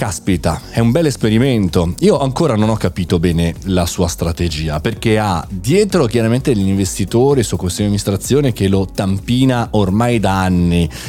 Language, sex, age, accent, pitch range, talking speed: Italian, male, 30-49, native, 90-115 Hz, 170 wpm